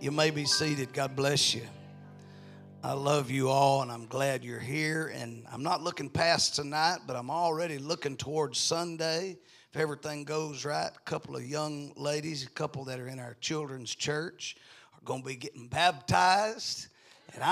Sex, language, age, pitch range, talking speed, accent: male, English, 40-59, 130-175 Hz, 180 wpm, American